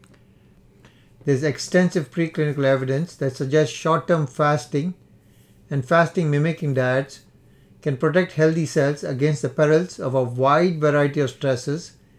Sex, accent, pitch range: male, Indian, 135-165 Hz